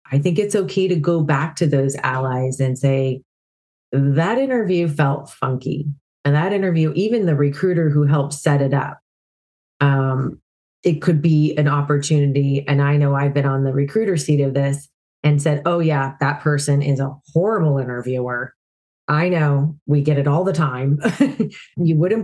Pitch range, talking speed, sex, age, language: 135-160 Hz, 175 wpm, female, 30-49, English